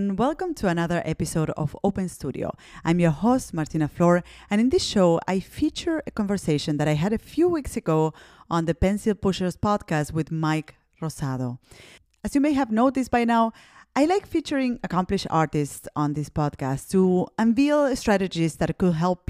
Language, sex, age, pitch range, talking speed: English, female, 30-49, 160-215 Hz, 175 wpm